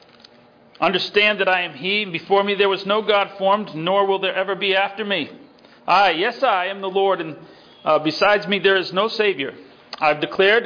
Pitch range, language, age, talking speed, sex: 165-210 Hz, English, 40-59, 210 wpm, male